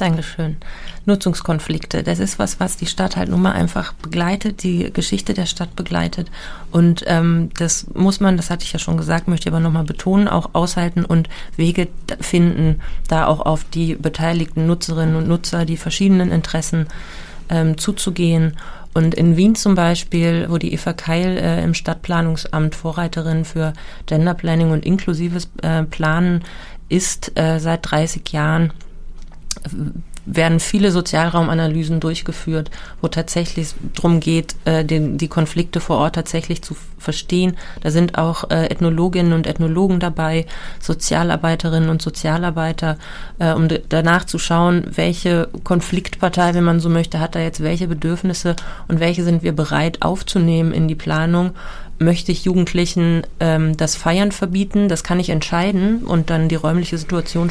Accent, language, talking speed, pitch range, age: German, German, 150 wpm, 160-175 Hz, 30-49